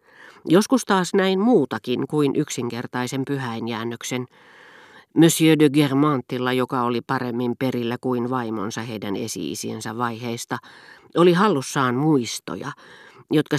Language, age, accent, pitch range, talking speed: Finnish, 40-59, native, 120-160 Hz, 100 wpm